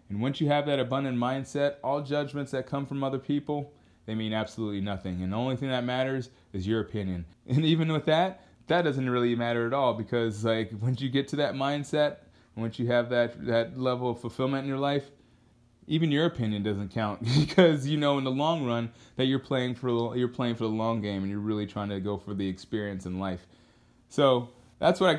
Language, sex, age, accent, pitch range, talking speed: English, male, 20-39, American, 110-135 Hz, 220 wpm